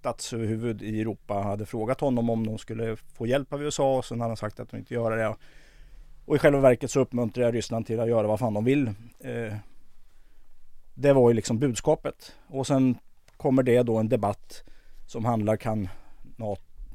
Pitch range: 110-130 Hz